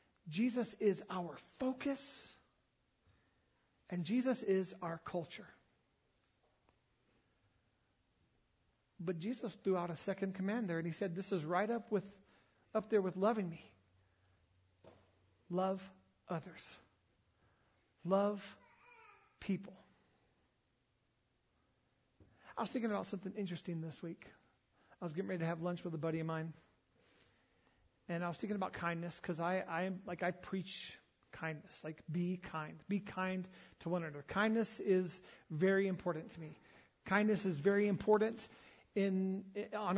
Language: English